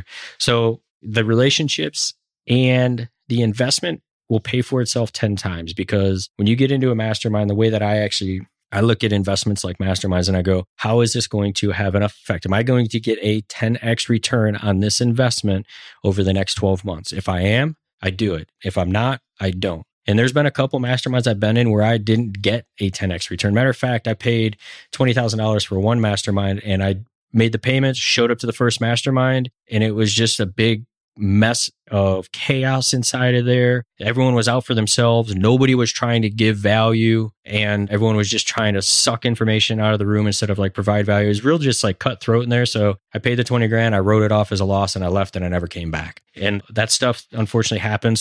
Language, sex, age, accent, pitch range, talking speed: English, male, 20-39, American, 100-120 Hz, 225 wpm